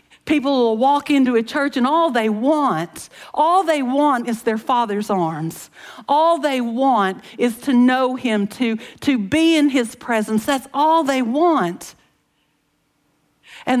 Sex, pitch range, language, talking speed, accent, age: female, 210-275 Hz, English, 150 wpm, American, 60-79